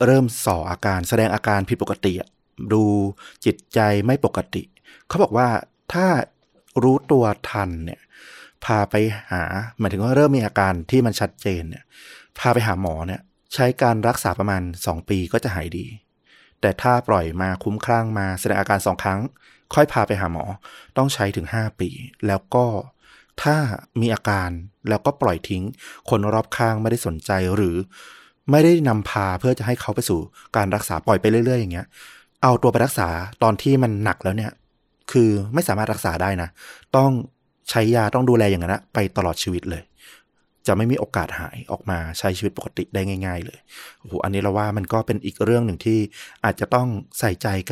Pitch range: 95-120 Hz